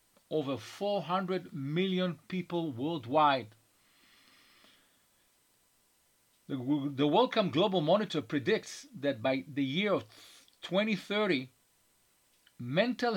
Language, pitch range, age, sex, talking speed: English, 140-190 Hz, 50-69, male, 80 wpm